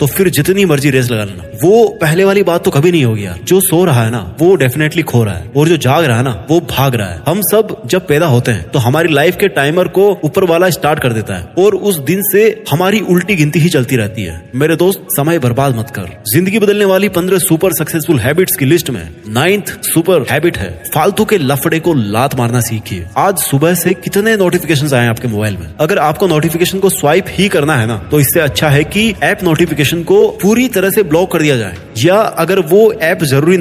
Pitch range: 130-180 Hz